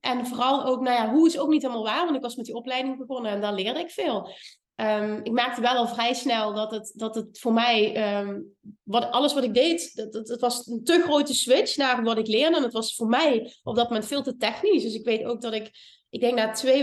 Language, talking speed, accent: Dutch, 270 wpm, Dutch